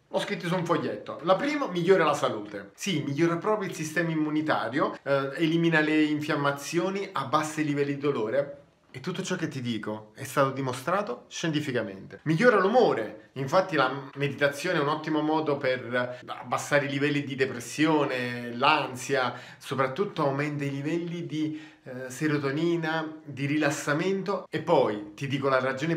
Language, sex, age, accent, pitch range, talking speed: Italian, male, 30-49, native, 130-165 Hz, 150 wpm